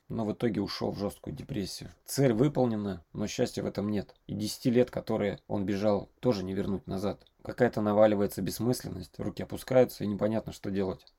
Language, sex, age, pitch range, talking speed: Russian, male, 20-39, 100-125 Hz, 175 wpm